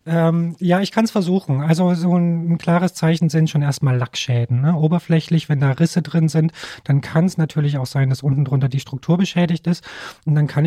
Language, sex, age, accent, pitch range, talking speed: German, male, 40-59, German, 130-160 Hz, 215 wpm